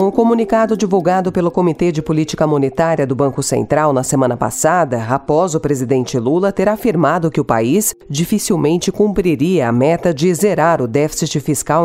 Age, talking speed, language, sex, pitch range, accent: 40-59, 160 wpm, Portuguese, female, 140-200 Hz, Brazilian